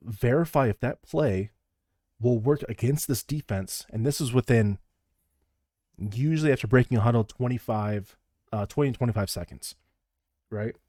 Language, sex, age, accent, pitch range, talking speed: English, male, 30-49, American, 95-120 Hz, 145 wpm